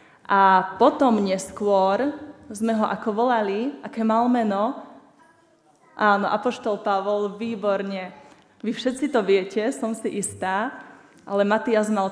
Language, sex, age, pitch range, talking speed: Slovak, female, 20-39, 205-230 Hz, 120 wpm